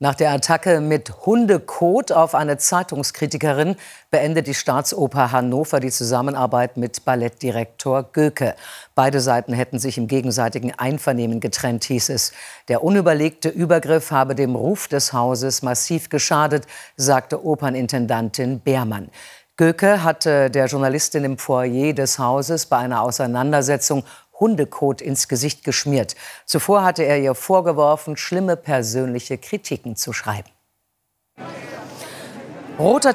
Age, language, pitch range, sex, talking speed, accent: 50-69, German, 130-155 Hz, female, 120 wpm, German